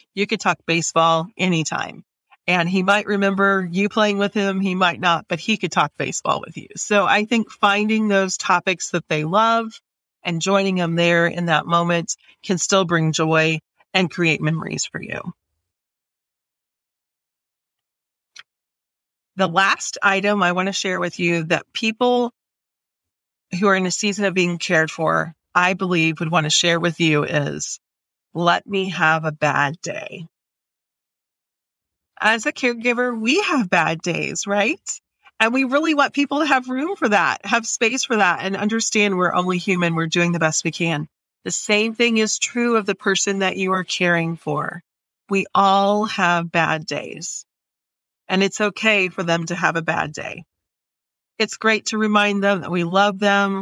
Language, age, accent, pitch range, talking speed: English, 40-59, American, 170-210 Hz, 170 wpm